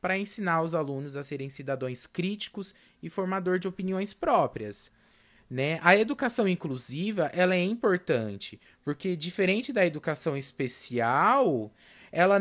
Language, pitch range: Portuguese, 150-205 Hz